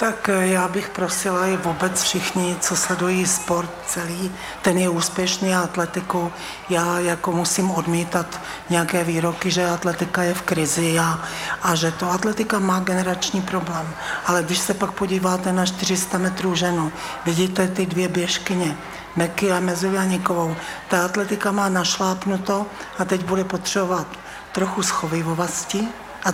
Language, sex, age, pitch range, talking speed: Czech, male, 60-79, 175-190 Hz, 140 wpm